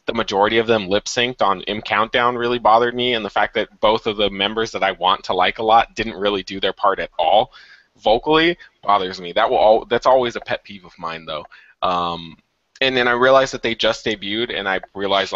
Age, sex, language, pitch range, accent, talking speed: 20-39, male, English, 100-130 Hz, American, 225 wpm